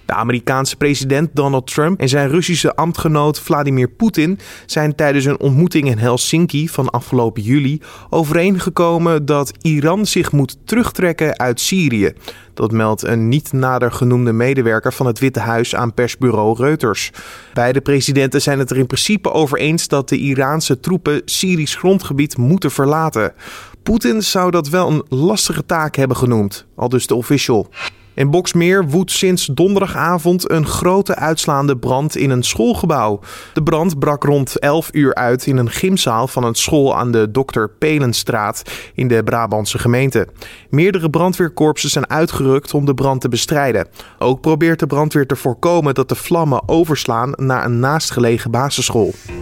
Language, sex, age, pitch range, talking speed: Dutch, male, 20-39, 125-165 Hz, 155 wpm